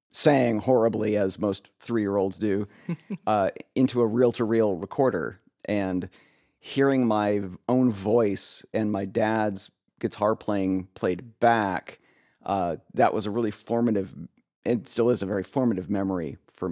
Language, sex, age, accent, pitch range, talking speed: English, male, 30-49, American, 95-115 Hz, 135 wpm